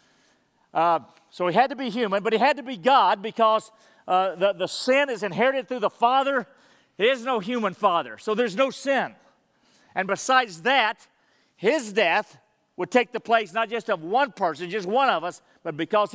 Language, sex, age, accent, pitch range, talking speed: English, male, 50-69, American, 175-230 Hz, 195 wpm